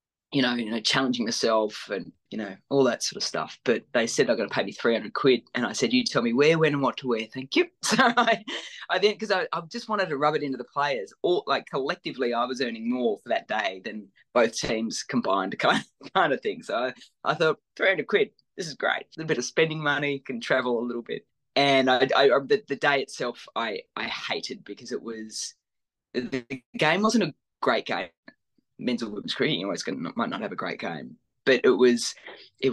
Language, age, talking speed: English, 20-39, 230 wpm